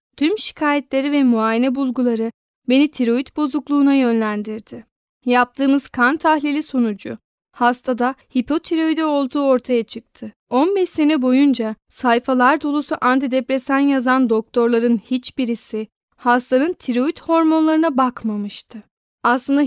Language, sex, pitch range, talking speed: Turkish, female, 235-280 Hz, 100 wpm